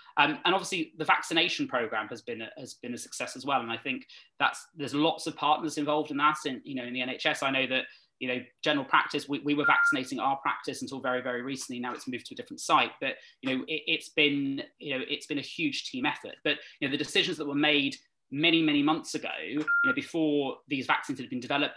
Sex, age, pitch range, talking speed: male, 20-39, 135-190 Hz, 250 wpm